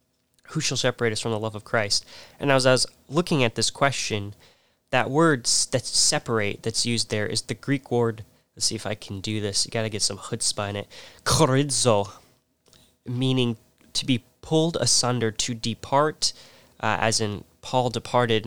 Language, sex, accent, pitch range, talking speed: English, male, American, 105-125 Hz, 180 wpm